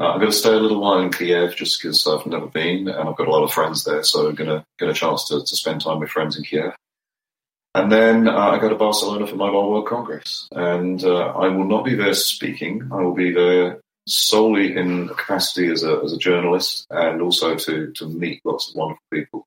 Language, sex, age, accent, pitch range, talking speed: English, male, 30-49, British, 75-95 Hz, 240 wpm